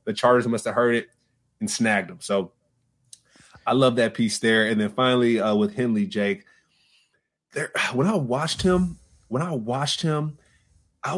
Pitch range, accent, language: 110-130 Hz, American, English